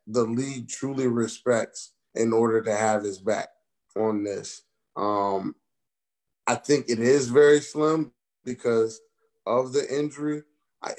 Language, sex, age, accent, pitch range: Japanese, male, 30-49, American, 110-150 Hz